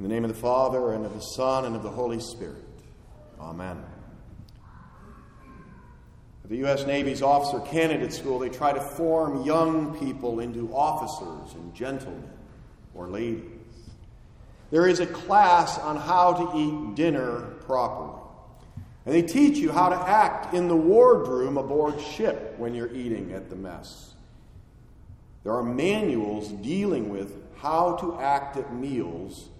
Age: 50-69